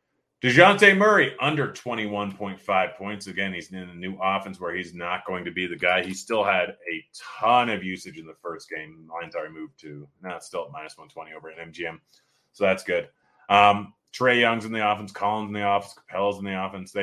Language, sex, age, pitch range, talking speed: English, male, 30-49, 85-105 Hz, 210 wpm